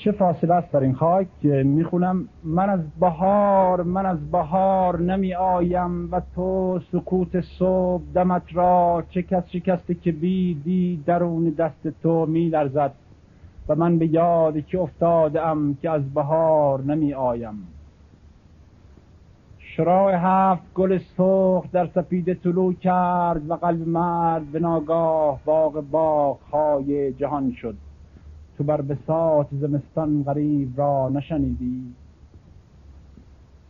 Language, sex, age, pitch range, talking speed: Persian, male, 50-69, 145-175 Hz, 120 wpm